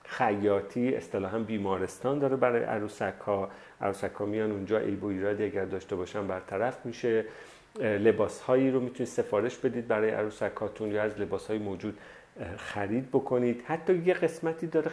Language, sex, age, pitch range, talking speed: Persian, male, 40-59, 105-130 Hz, 125 wpm